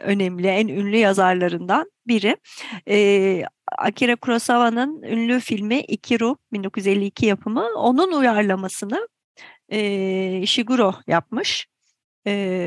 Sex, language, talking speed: female, Turkish, 90 wpm